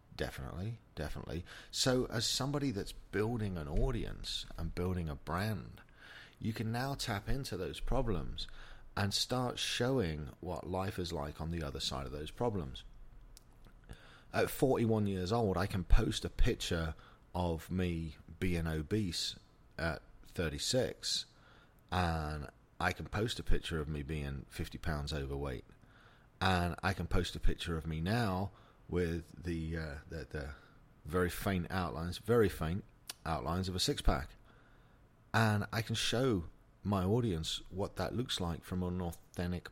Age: 40-59